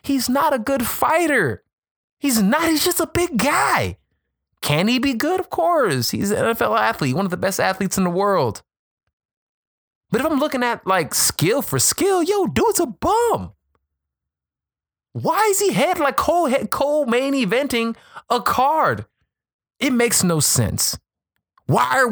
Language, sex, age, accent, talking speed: English, male, 20-39, American, 165 wpm